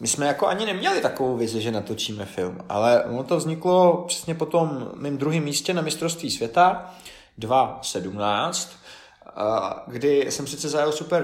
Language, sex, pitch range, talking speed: Czech, male, 125-155 Hz, 150 wpm